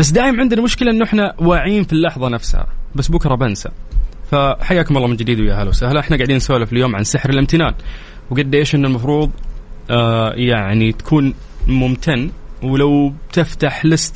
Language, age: English, 20-39